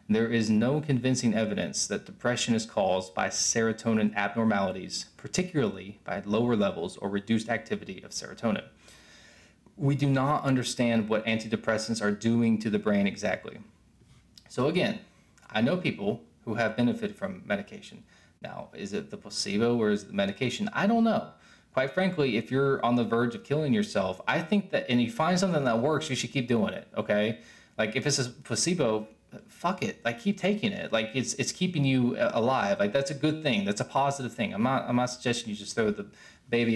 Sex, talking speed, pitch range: male, 190 wpm, 115-185 Hz